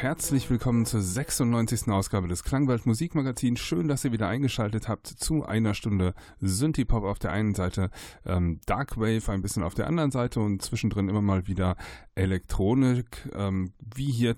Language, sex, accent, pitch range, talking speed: German, male, German, 95-125 Hz, 160 wpm